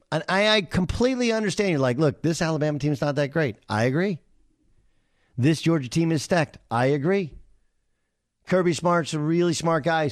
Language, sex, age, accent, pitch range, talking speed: English, male, 50-69, American, 110-175 Hz, 170 wpm